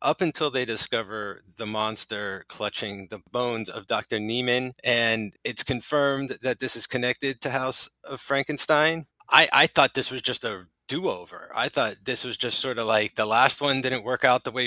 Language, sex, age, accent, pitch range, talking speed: English, male, 30-49, American, 105-130 Hz, 190 wpm